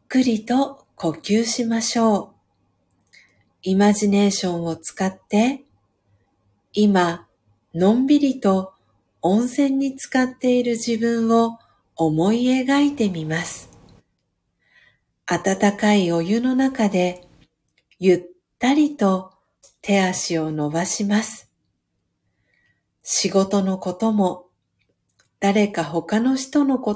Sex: female